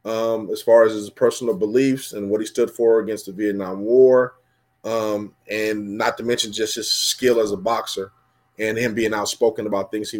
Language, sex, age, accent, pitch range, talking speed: English, male, 20-39, American, 105-125 Hz, 200 wpm